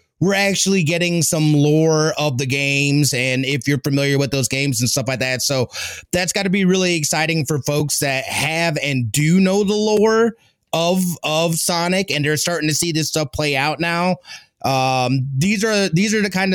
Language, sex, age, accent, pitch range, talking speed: English, male, 30-49, American, 135-160 Hz, 200 wpm